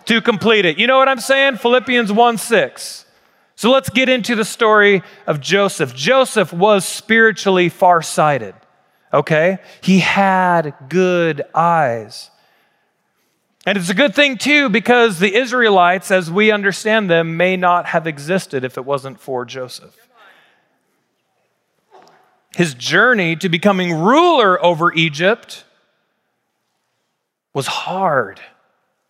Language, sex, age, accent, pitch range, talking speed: English, male, 40-59, American, 165-225 Hz, 120 wpm